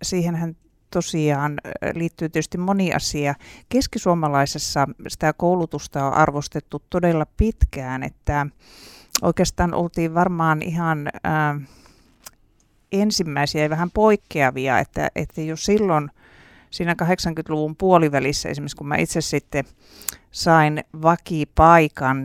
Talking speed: 100 wpm